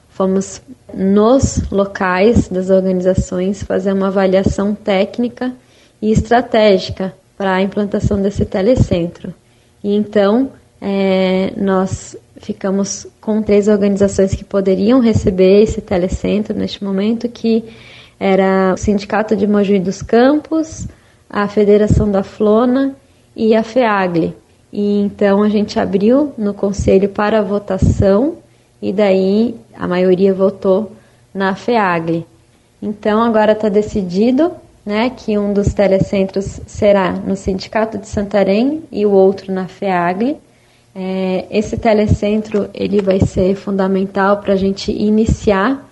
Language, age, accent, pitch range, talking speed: Portuguese, 20-39, Brazilian, 190-215 Hz, 120 wpm